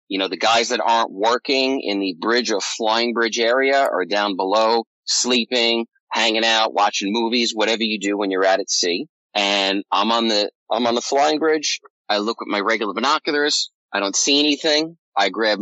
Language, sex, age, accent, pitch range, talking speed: English, male, 30-49, American, 105-145 Hz, 195 wpm